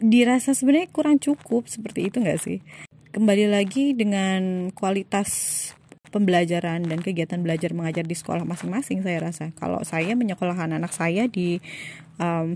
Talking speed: 140 wpm